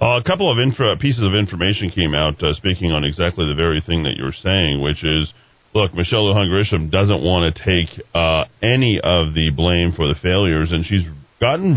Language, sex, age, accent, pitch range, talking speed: English, male, 40-59, American, 85-120 Hz, 215 wpm